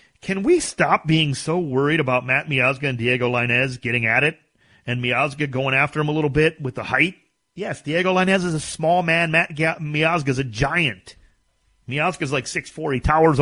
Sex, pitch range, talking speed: male, 135-180 Hz, 190 wpm